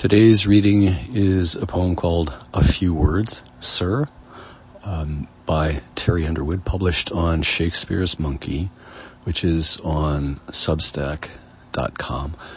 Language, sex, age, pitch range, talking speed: English, male, 40-59, 75-95 Hz, 105 wpm